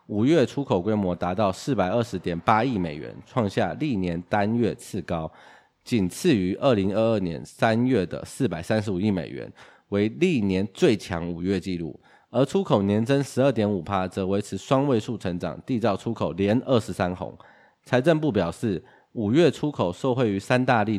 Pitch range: 95-125 Hz